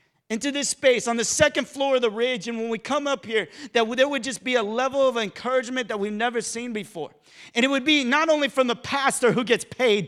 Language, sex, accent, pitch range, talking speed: English, male, American, 215-275 Hz, 250 wpm